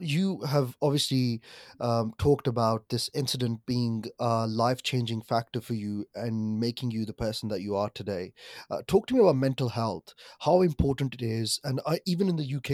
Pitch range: 120-155 Hz